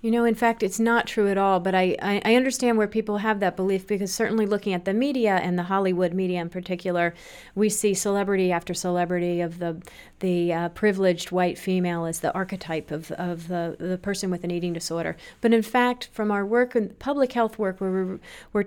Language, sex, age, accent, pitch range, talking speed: English, female, 30-49, American, 180-210 Hz, 215 wpm